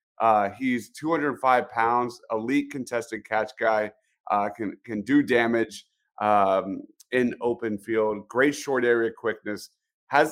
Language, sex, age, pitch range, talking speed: English, male, 30-49, 110-145 Hz, 130 wpm